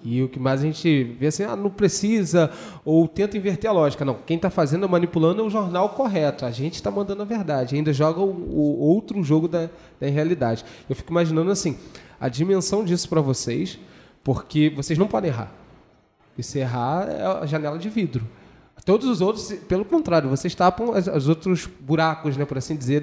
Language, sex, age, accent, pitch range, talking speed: Portuguese, male, 20-39, Brazilian, 140-185 Hz, 200 wpm